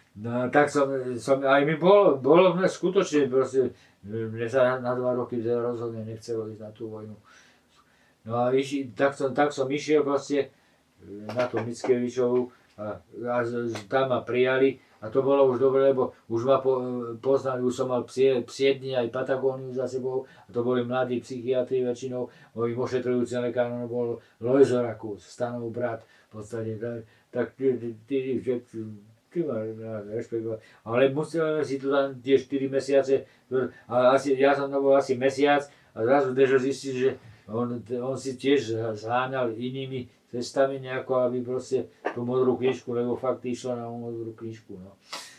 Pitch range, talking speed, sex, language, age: 115-135 Hz, 150 wpm, male, Slovak, 50-69